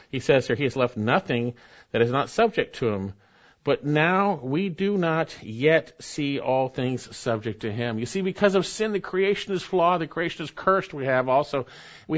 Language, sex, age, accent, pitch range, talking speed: English, male, 50-69, American, 125-175 Hz, 205 wpm